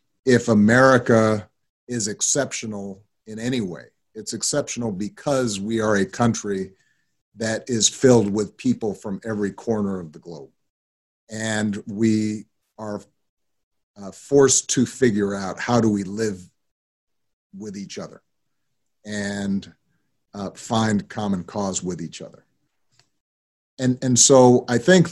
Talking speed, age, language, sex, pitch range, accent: 125 wpm, 50-69, English, male, 100-115 Hz, American